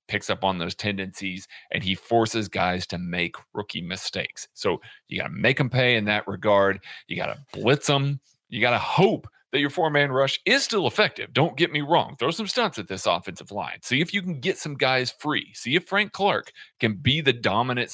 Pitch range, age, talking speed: 105-150 Hz, 30-49, 225 wpm